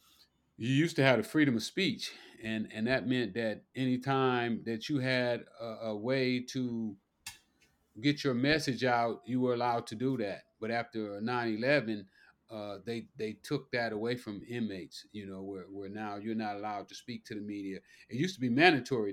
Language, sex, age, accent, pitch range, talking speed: English, male, 40-59, American, 110-130 Hz, 190 wpm